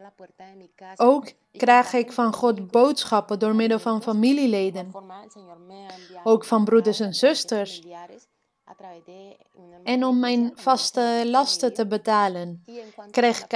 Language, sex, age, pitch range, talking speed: Dutch, female, 30-49, 200-245 Hz, 105 wpm